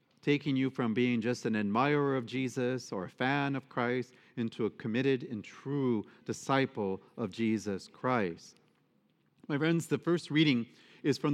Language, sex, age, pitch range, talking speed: English, male, 40-59, 125-160 Hz, 160 wpm